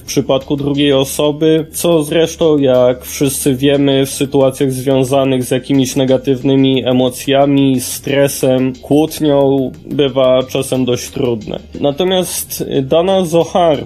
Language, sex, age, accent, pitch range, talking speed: Polish, male, 20-39, native, 130-160 Hz, 110 wpm